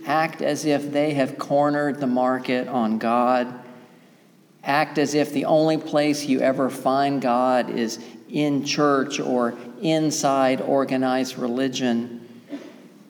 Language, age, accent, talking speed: English, 50-69, American, 125 wpm